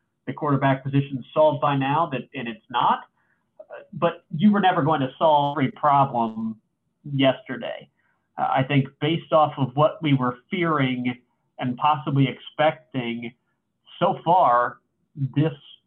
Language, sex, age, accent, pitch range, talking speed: English, male, 40-59, American, 130-150 Hz, 135 wpm